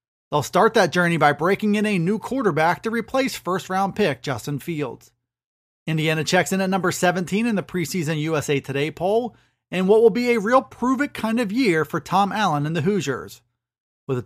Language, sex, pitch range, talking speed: English, male, 150-220 Hz, 195 wpm